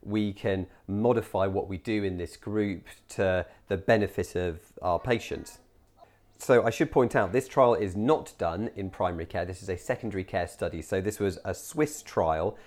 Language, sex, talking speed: English, male, 190 wpm